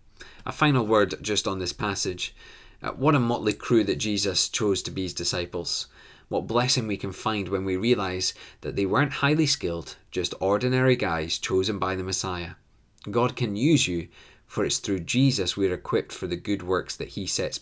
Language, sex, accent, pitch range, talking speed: English, male, British, 95-120 Hz, 195 wpm